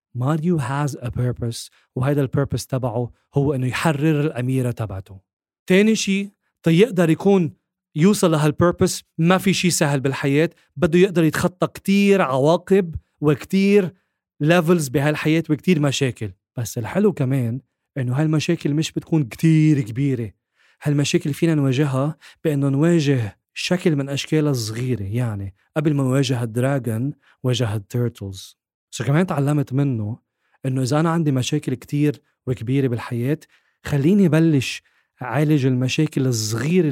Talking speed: 125 wpm